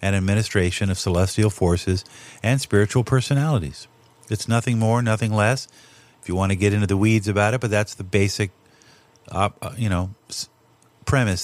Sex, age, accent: male, 50-69, American